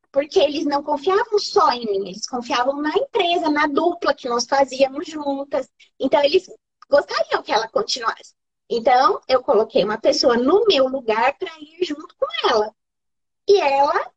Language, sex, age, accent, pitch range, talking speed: Portuguese, female, 20-39, Brazilian, 270-375 Hz, 160 wpm